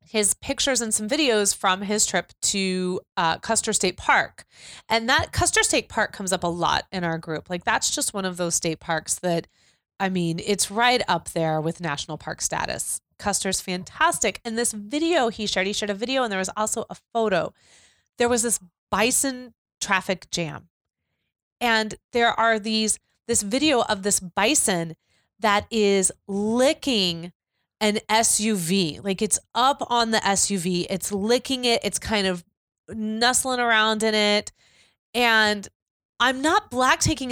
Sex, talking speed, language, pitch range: female, 165 wpm, English, 185-235 Hz